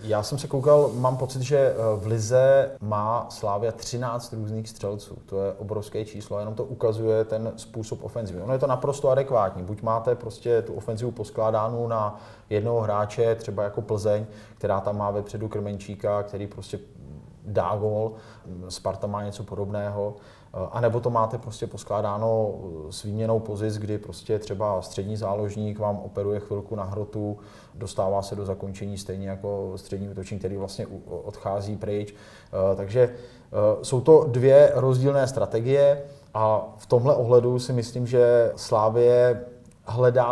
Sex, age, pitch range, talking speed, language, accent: male, 30-49, 105-120 Hz, 145 wpm, Czech, native